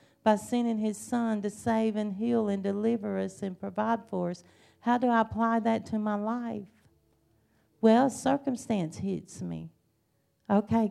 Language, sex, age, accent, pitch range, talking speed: English, female, 40-59, American, 200-235 Hz, 155 wpm